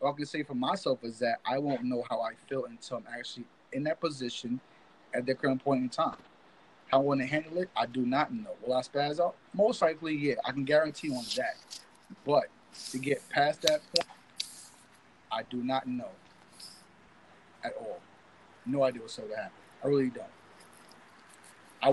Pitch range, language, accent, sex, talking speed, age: 130-160 Hz, English, American, male, 190 wpm, 30-49